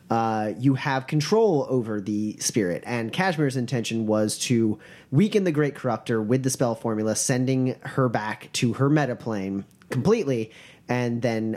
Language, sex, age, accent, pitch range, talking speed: English, male, 30-49, American, 115-150 Hz, 150 wpm